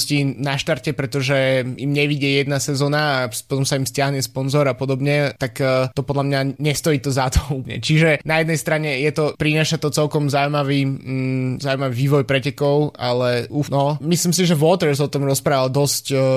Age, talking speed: 20-39, 180 wpm